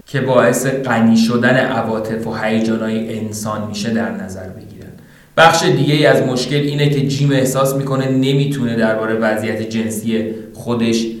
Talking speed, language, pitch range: 140 wpm, Persian, 115-135 Hz